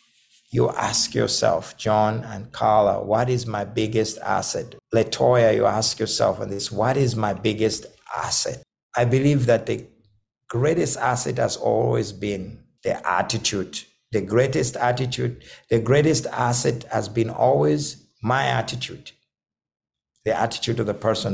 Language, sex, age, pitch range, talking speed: English, male, 60-79, 110-140 Hz, 140 wpm